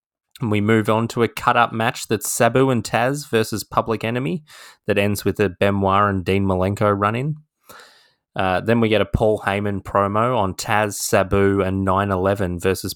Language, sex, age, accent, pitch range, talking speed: English, male, 20-39, Australian, 90-105 Hz, 175 wpm